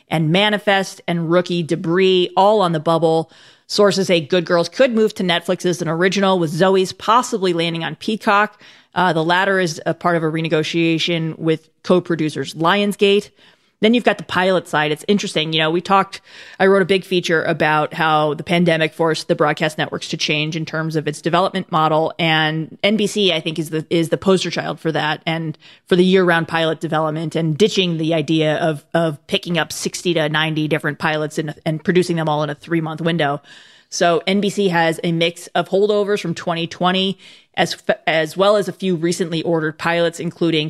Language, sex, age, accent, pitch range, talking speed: English, female, 30-49, American, 160-190 Hz, 195 wpm